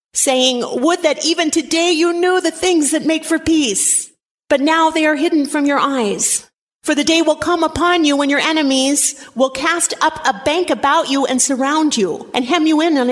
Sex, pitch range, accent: female, 235-295 Hz, American